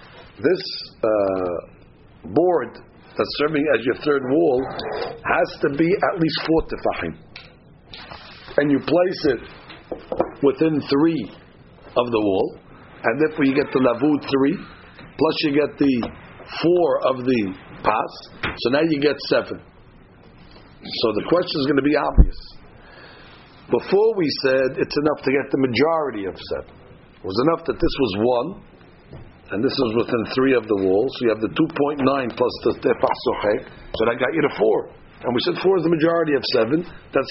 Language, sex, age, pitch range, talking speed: English, male, 60-79, 135-180 Hz, 165 wpm